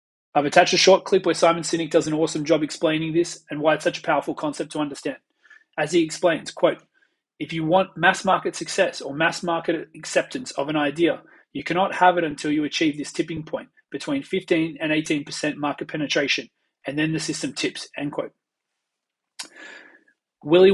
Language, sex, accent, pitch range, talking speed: English, male, Australian, 150-175 Hz, 185 wpm